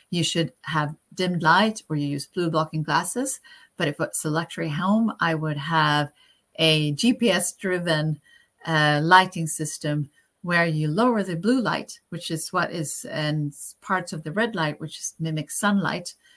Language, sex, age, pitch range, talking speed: English, female, 40-59, 150-185 Hz, 165 wpm